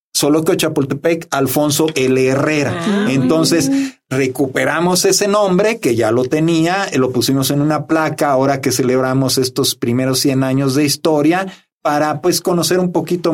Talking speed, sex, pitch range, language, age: 150 wpm, male, 135-170 Hz, Spanish, 50-69